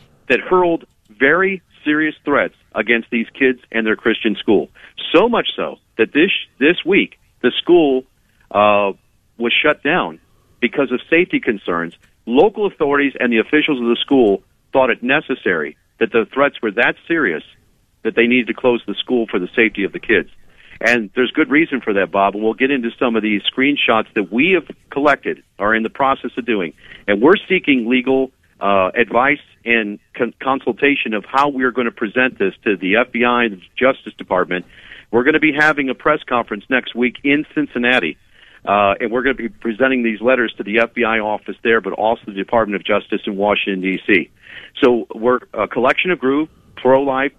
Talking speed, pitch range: 185 wpm, 110-135 Hz